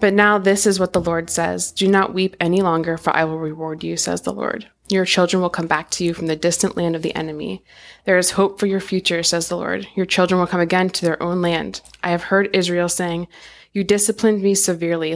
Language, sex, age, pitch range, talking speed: English, female, 20-39, 170-195 Hz, 245 wpm